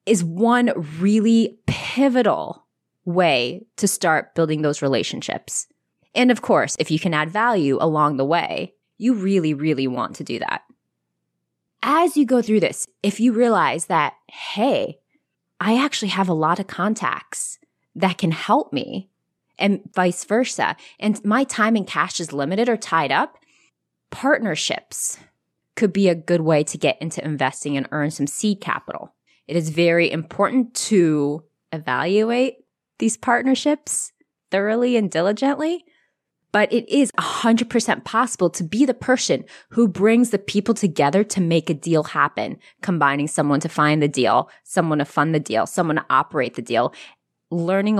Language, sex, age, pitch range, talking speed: English, female, 20-39, 160-225 Hz, 155 wpm